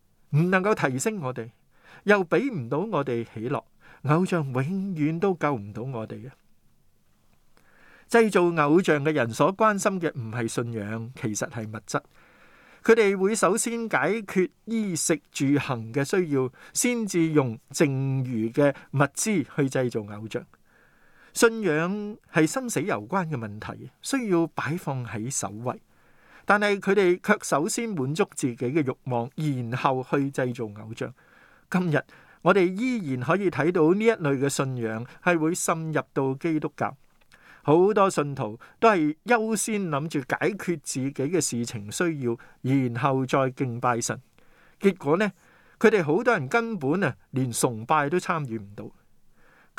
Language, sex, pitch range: Chinese, male, 125-180 Hz